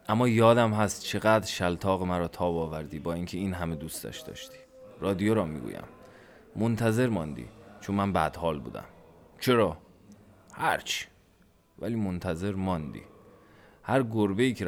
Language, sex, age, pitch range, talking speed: Persian, male, 30-49, 85-110 Hz, 125 wpm